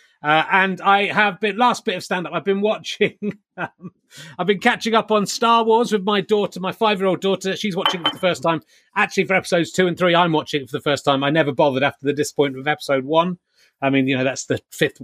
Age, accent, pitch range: 30-49, British, 150-200 Hz